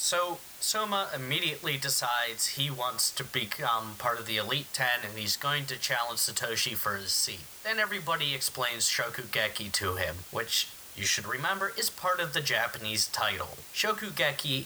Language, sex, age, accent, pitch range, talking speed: English, male, 30-49, American, 110-145 Hz, 160 wpm